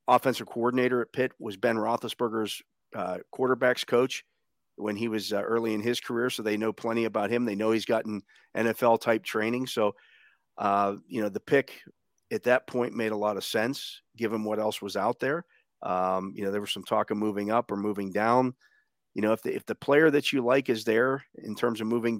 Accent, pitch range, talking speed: American, 105-125 Hz, 210 wpm